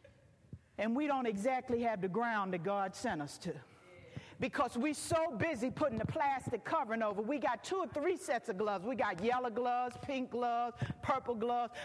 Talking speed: 185 wpm